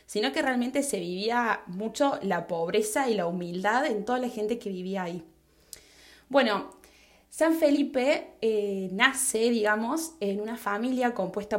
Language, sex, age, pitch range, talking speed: Spanish, female, 20-39, 200-260 Hz, 145 wpm